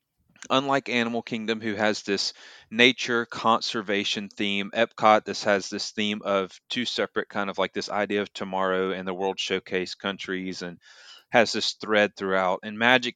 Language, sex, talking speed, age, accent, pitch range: English, male, 165 wpm, 30-49, American, 100-130 Hz